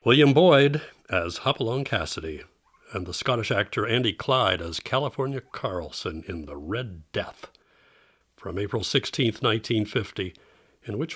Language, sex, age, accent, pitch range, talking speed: English, male, 60-79, American, 90-130 Hz, 130 wpm